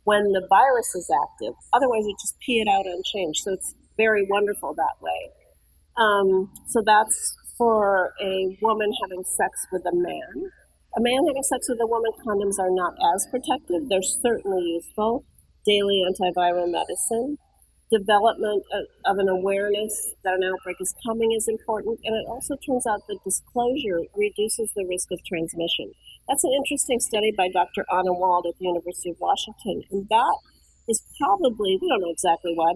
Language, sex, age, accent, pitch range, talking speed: English, female, 40-59, American, 185-235 Hz, 170 wpm